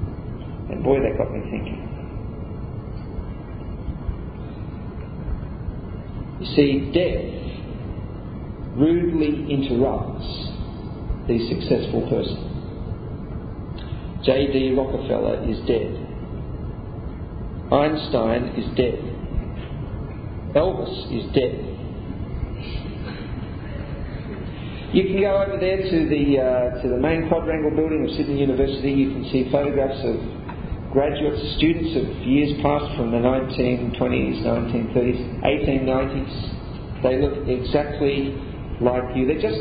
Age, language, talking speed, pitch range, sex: 40-59, English, 95 wpm, 110-145 Hz, male